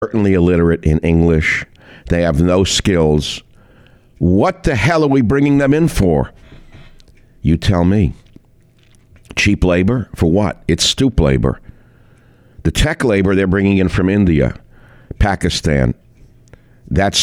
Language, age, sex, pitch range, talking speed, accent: English, 60-79, male, 75-110 Hz, 130 wpm, American